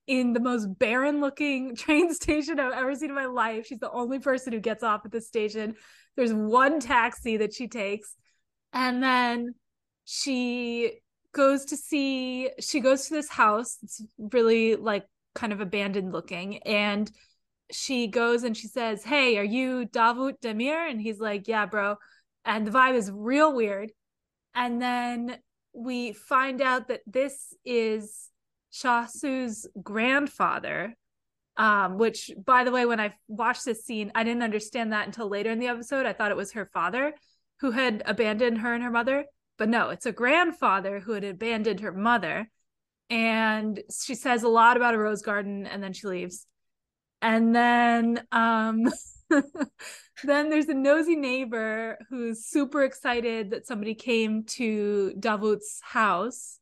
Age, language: 20-39, English